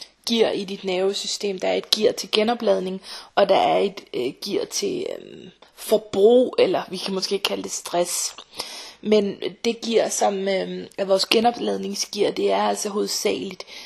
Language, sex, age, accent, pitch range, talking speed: Danish, female, 30-49, native, 190-215 Hz, 160 wpm